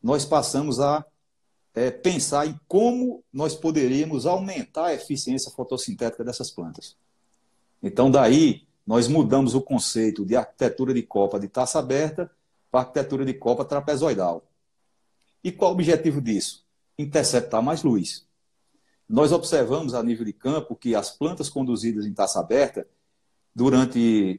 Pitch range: 115-150 Hz